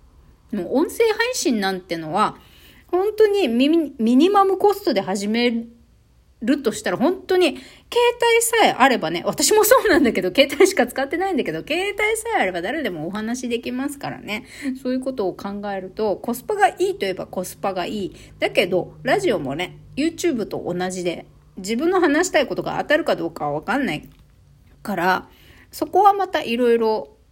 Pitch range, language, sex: 190-290 Hz, Japanese, female